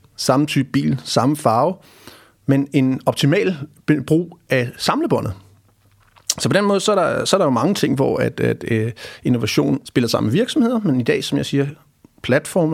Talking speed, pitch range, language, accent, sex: 190 wpm, 115-150 Hz, Danish, native, male